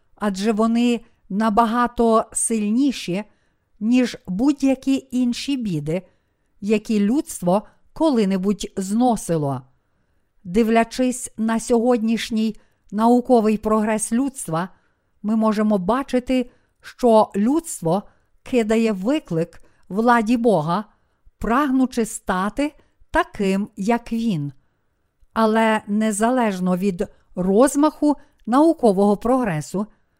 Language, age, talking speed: Ukrainian, 50-69, 75 wpm